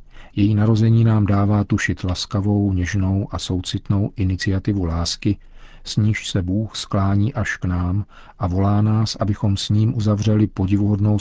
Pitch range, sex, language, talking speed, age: 90-105 Hz, male, Czech, 145 wpm, 50-69